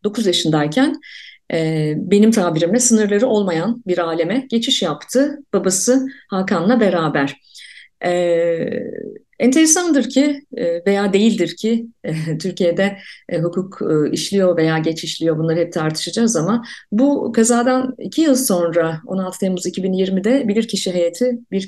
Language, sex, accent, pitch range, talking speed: Turkish, female, native, 170-225 Hz, 125 wpm